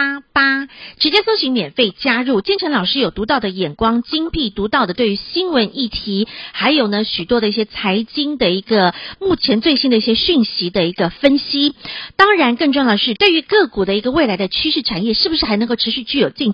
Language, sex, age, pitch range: Chinese, female, 50-69, 205-295 Hz